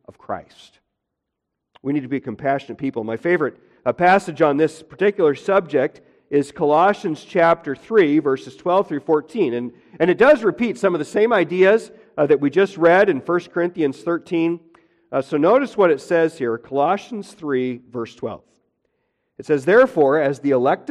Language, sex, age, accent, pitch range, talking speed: English, male, 50-69, American, 140-185 Hz, 170 wpm